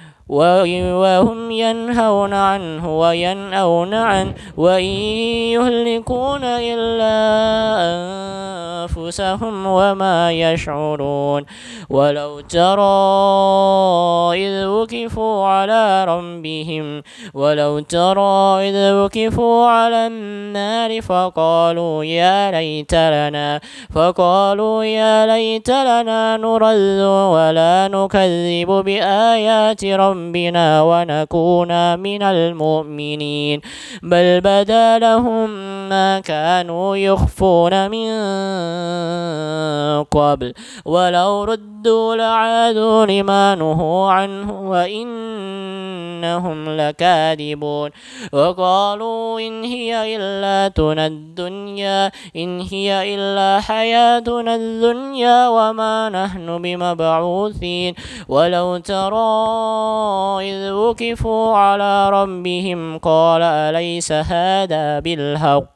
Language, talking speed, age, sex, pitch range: Indonesian, 70 wpm, 20-39, male, 170-220 Hz